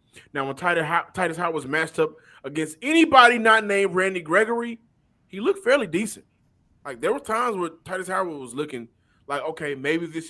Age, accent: 20-39, American